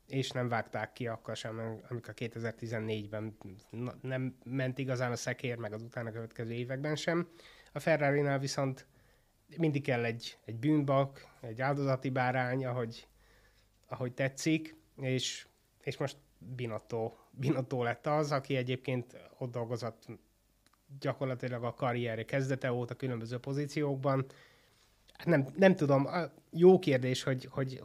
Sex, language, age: male, Hungarian, 30-49